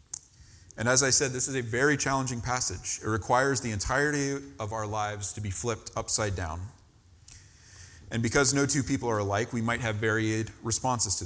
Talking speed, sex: 185 wpm, male